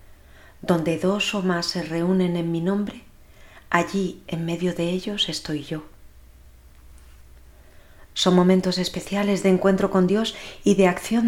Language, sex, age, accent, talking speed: Spanish, female, 30-49, Spanish, 140 wpm